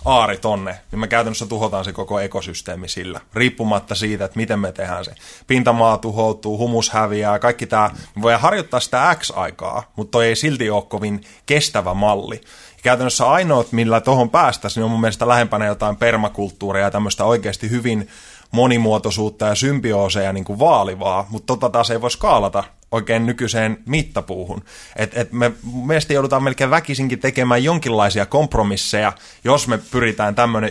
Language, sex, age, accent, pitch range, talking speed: Finnish, male, 20-39, native, 105-120 Hz, 155 wpm